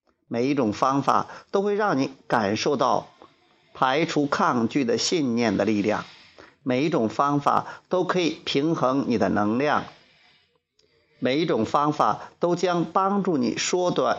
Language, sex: Chinese, male